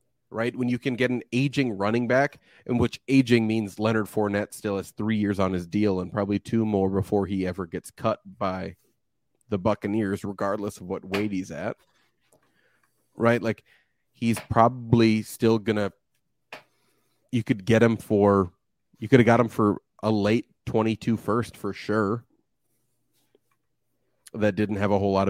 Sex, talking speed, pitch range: male, 165 wpm, 105-125 Hz